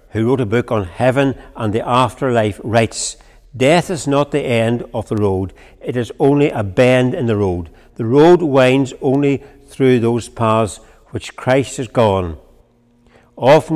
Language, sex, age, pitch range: English, male, 60-79, 110-135 Hz